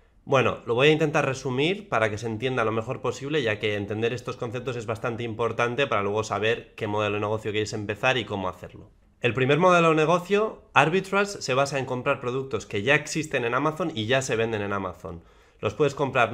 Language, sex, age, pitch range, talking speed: Spanish, male, 20-39, 110-145 Hz, 215 wpm